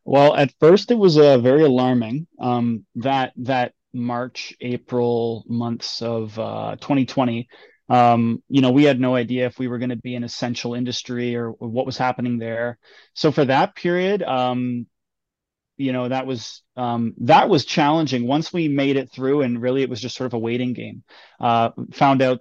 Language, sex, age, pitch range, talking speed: English, male, 20-39, 120-135 Hz, 185 wpm